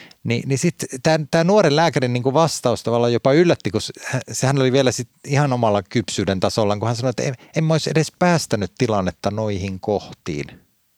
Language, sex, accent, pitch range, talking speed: Finnish, male, native, 100-140 Hz, 180 wpm